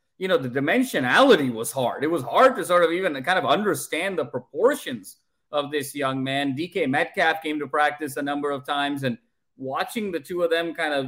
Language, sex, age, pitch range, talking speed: English, male, 30-49, 140-170 Hz, 210 wpm